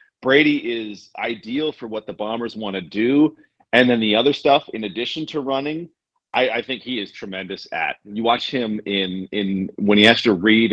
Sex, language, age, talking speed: male, English, 40-59, 200 wpm